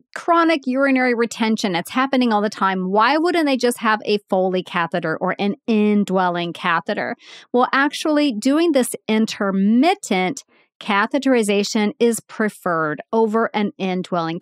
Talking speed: 130 wpm